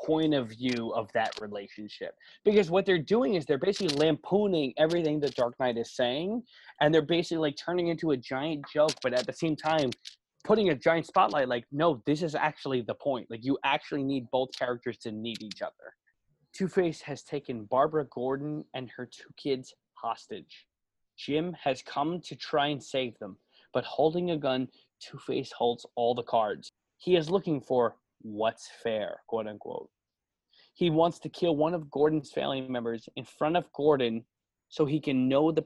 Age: 20-39